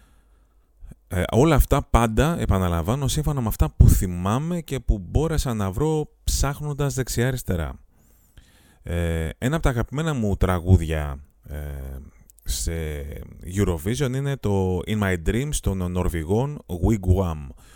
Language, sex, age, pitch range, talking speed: Greek, male, 30-49, 80-105 Hz, 110 wpm